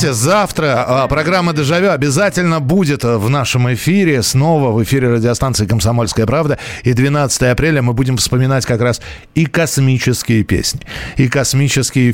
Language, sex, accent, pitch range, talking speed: Russian, male, native, 125-160 Hz, 140 wpm